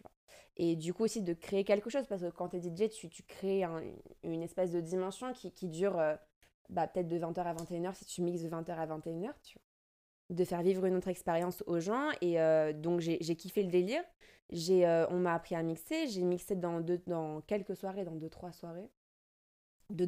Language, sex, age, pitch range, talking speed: French, female, 20-39, 170-200 Hz, 220 wpm